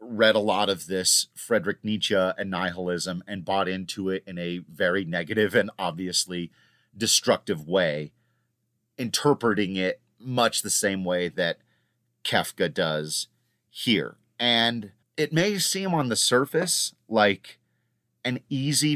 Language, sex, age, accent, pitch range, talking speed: English, male, 30-49, American, 105-140 Hz, 130 wpm